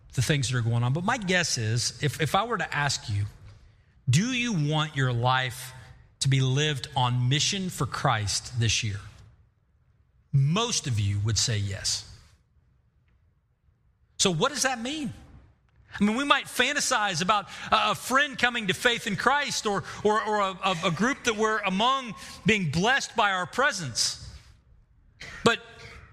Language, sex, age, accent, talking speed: English, male, 40-59, American, 160 wpm